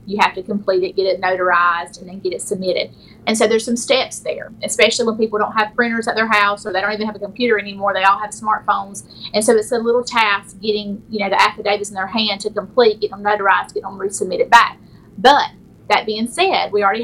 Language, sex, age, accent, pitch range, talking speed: English, female, 30-49, American, 200-245 Hz, 245 wpm